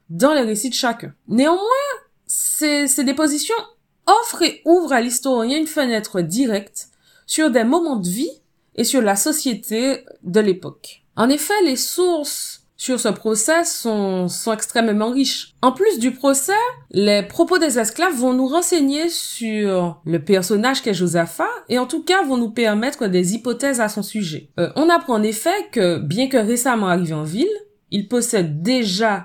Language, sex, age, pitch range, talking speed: French, female, 20-39, 195-300 Hz, 165 wpm